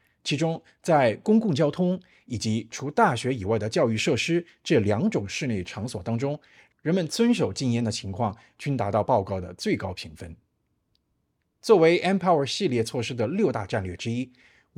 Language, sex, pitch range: Chinese, male, 105-155 Hz